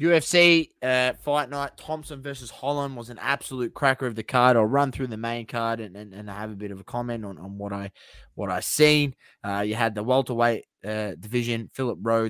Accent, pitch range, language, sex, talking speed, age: Australian, 100-120 Hz, English, male, 230 wpm, 20-39